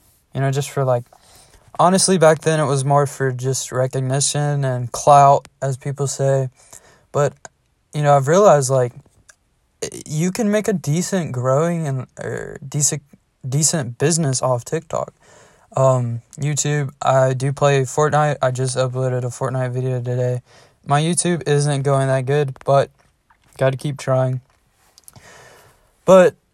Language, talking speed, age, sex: English, 140 wpm, 20-39, male